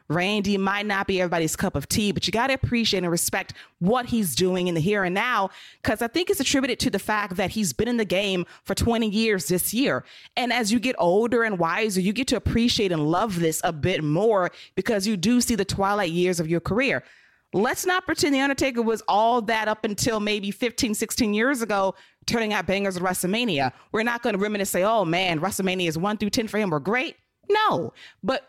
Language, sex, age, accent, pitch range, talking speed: English, female, 20-39, American, 175-230 Hz, 230 wpm